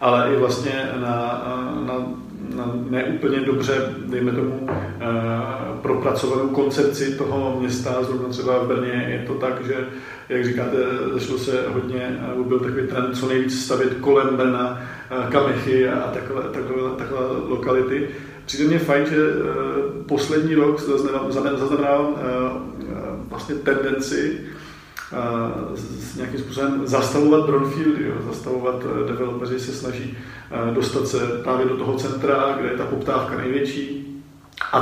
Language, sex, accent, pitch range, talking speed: Czech, male, native, 125-140 Hz, 125 wpm